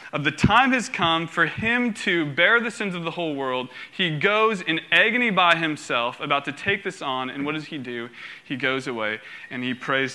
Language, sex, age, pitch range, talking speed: English, male, 20-39, 125-175 Hz, 220 wpm